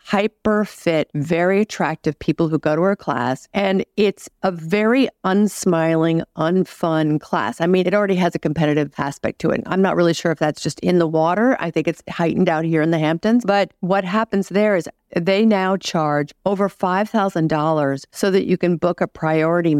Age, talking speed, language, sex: 50-69, 190 wpm, English, female